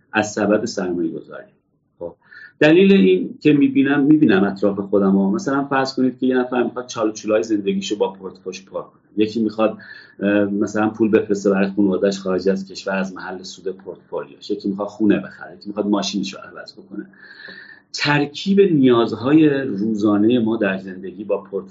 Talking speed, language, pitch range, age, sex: 160 wpm, Persian, 100-125 Hz, 40-59, male